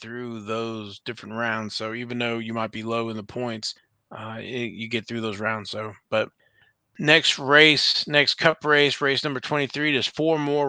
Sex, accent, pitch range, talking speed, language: male, American, 110-135 Hz, 185 wpm, English